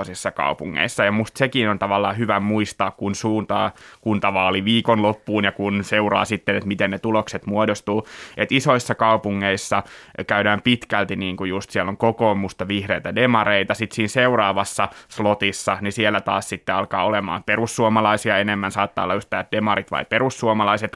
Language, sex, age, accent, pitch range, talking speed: Finnish, male, 20-39, native, 100-110 Hz, 145 wpm